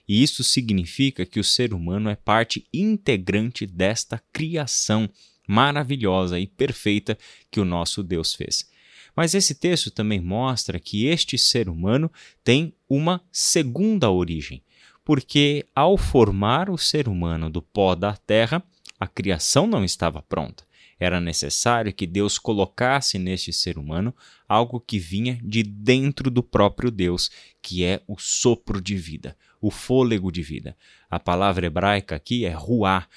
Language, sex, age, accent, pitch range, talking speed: Portuguese, male, 20-39, Brazilian, 95-130 Hz, 145 wpm